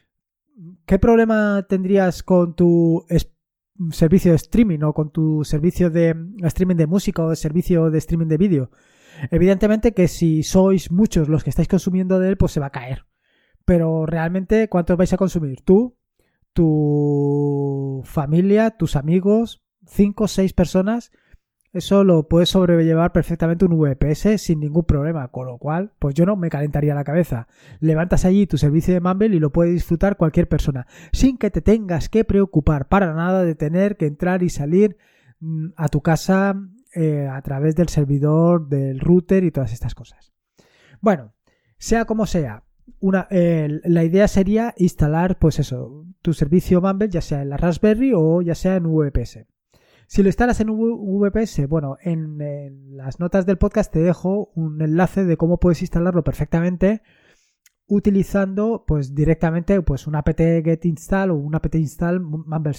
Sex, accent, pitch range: male, Spanish, 155-195 Hz